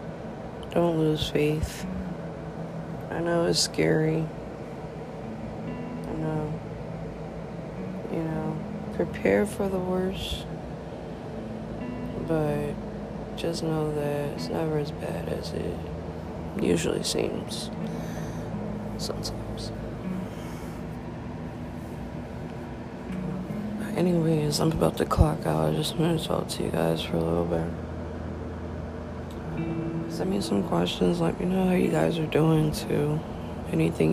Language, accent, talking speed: English, American, 105 wpm